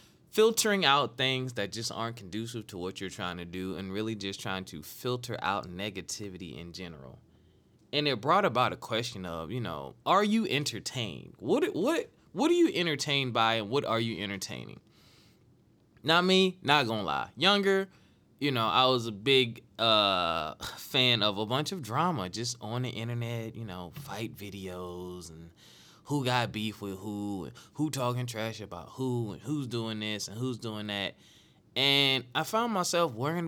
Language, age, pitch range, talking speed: English, 20-39, 95-140 Hz, 175 wpm